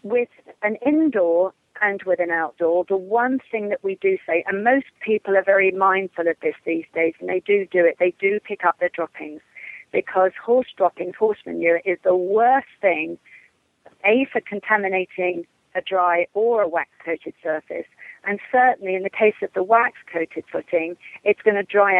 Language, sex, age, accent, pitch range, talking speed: English, female, 40-59, British, 175-225 Hz, 180 wpm